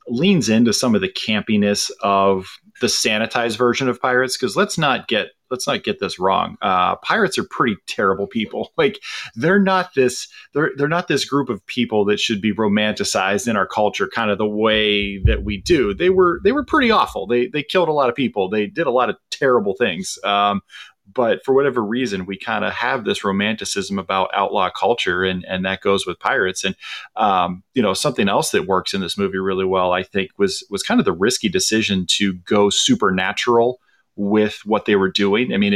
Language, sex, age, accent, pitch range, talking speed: English, male, 30-49, American, 100-145 Hz, 210 wpm